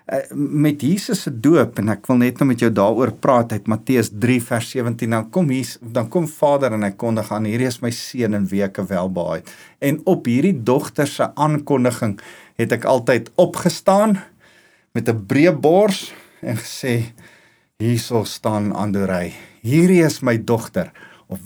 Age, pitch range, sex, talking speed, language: 50-69, 110-150 Hz, male, 170 wpm, English